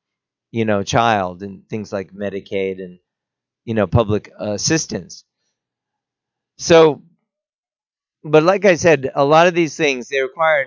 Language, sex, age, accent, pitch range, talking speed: English, male, 40-59, American, 115-150 Hz, 135 wpm